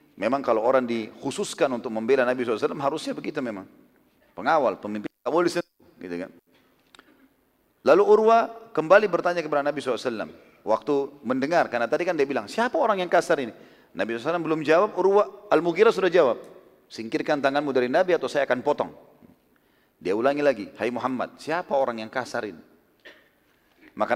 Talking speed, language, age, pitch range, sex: 155 wpm, Indonesian, 40-59, 150-235 Hz, male